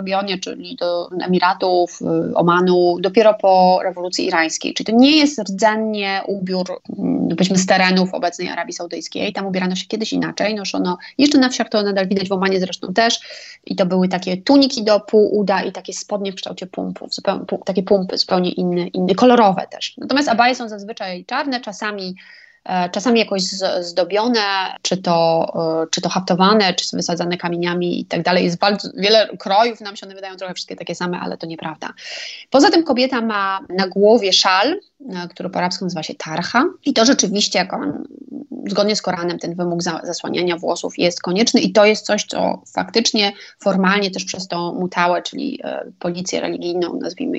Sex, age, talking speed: female, 20-39, 170 wpm